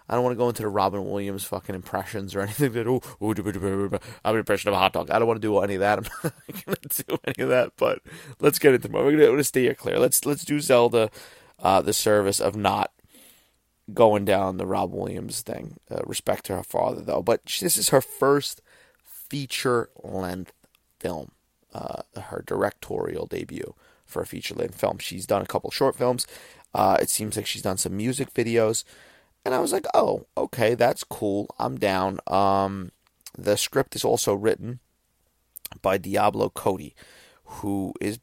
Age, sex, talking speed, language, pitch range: 30-49, male, 190 wpm, English, 100-120 Hz